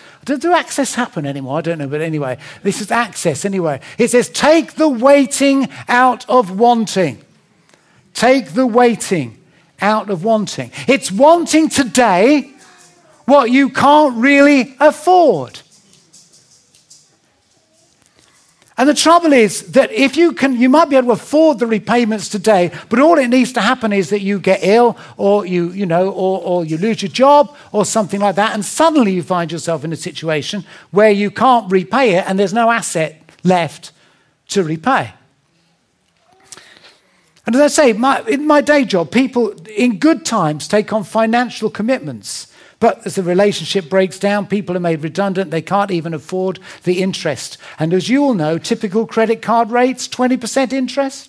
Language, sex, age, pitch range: English, male, 50-69, 180-260 Hz